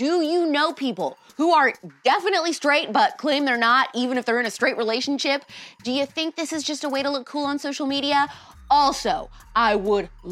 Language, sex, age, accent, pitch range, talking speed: English, female, 20-39, American, 190-280 Hz, 210 wpm